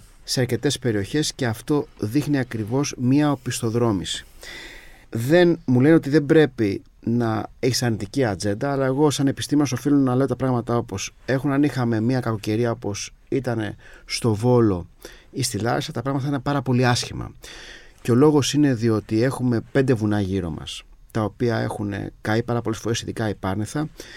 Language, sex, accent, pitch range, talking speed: Greek, male, native, 110-135 Hz, 160 wpm